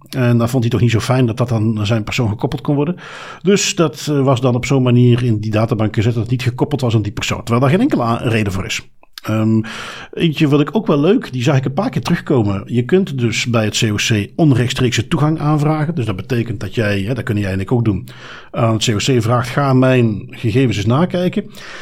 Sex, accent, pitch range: male, Dutch, 115-150 Hz